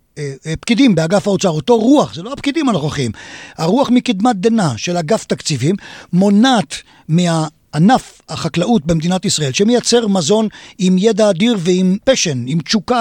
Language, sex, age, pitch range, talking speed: Hebrew, male, 50-69, 170-225 Hz, 135 wpm